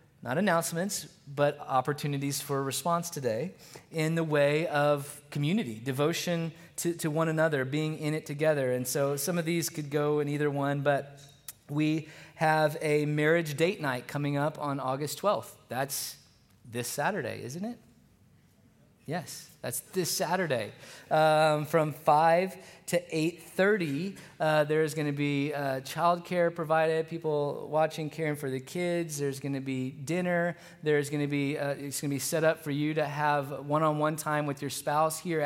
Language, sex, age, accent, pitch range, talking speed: English, male, 20-39, American, 145-165 Hz, 165 wpm